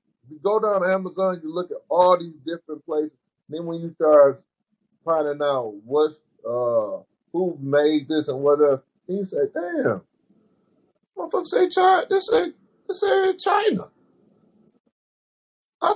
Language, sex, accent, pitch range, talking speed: English, male, American, 150-215 Hz, 150 wpm